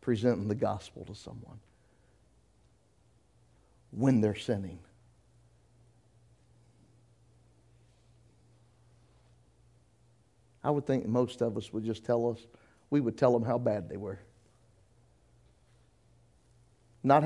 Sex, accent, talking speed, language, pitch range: male, American, 95 wpm, English, 115-145 Hz